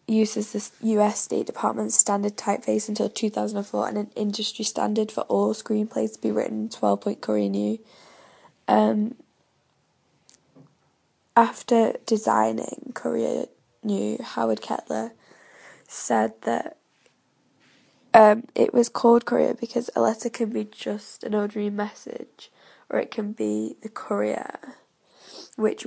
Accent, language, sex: British, English, female